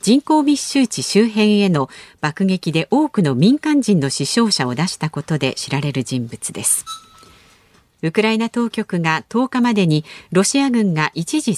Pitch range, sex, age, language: 155-240 Hz, female, 50-69, Japanese